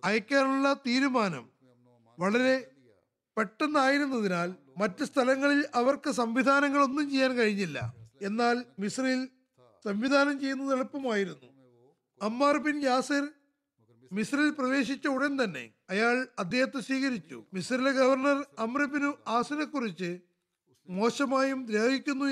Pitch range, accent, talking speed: 210-275 Hz, native, 80 wpm